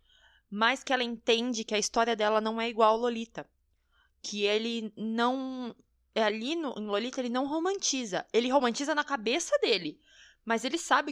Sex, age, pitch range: female, 20-39, 190-280 Hz